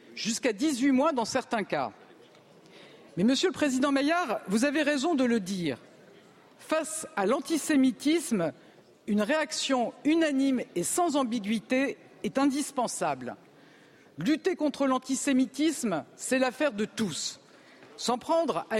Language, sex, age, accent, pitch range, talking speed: French, female, 50-69, French, 230-305 Hz, 120 wpm